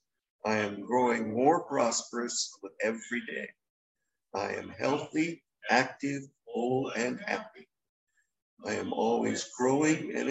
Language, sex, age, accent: English, male, 60-79, American